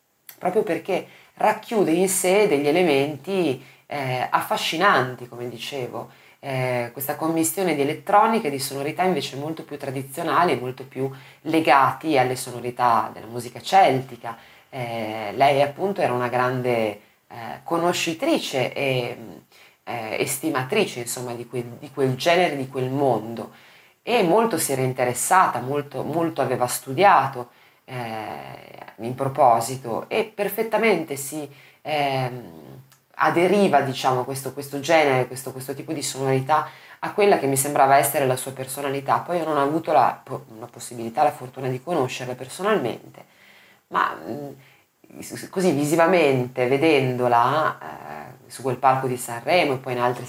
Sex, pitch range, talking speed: female, 125-155 Hz, 135 wpm